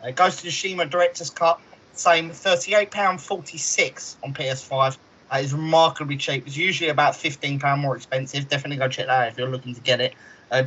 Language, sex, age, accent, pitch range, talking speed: English, male, 20-39, British, 135-165 Hz, 215 wpm